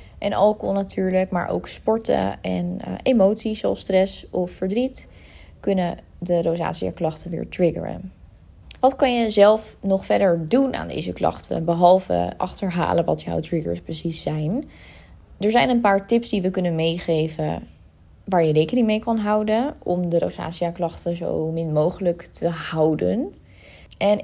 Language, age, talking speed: Dutch, 20-39, 145 wpm